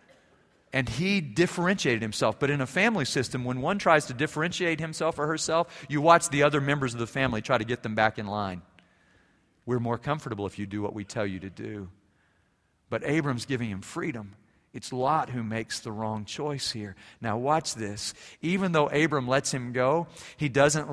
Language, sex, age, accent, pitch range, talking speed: English, male, 40-59, American, 110-145 Hz, 195 wpm